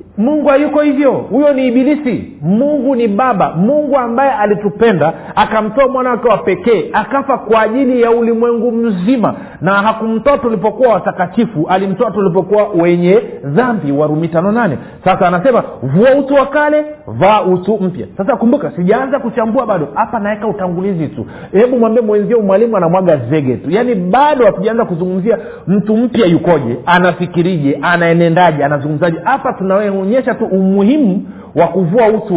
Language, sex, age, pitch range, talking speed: Swahili, male, 50-69, 165-235 Hz, 145 wpm